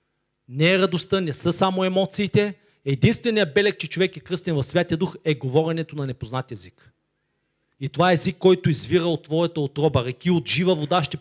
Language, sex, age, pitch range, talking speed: Bulgarian, male, 40-59, 140-175 Hz, 185 wpm